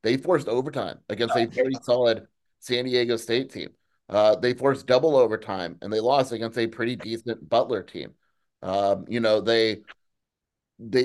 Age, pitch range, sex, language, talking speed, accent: 30-49, 110-130 Hz, male, English, 165 wpm, American